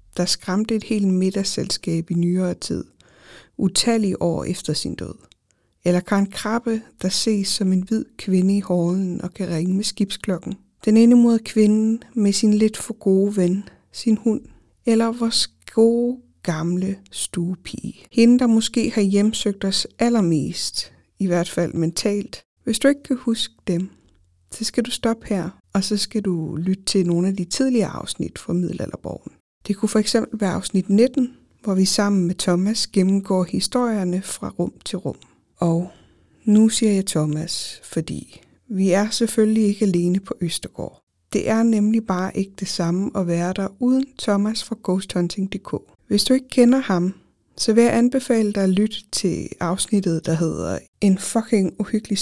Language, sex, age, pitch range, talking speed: Danish, female, 60-79, 180-225 Hz, 165 wpm